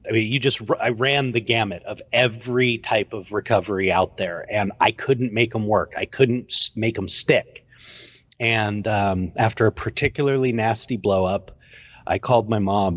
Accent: American